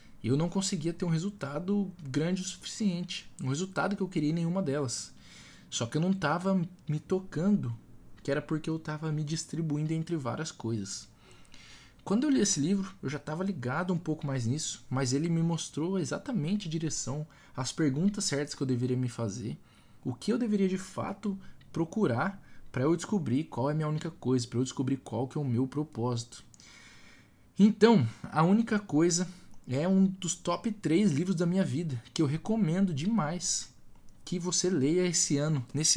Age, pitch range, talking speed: 20-39, 135-180 Hz, 185 wpm